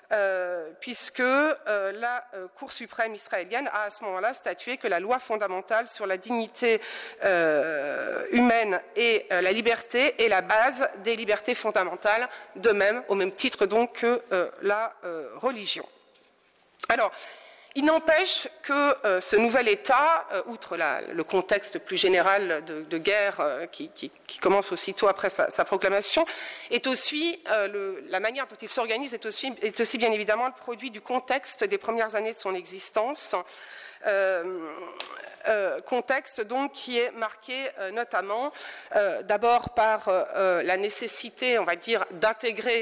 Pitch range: 195-245 Hz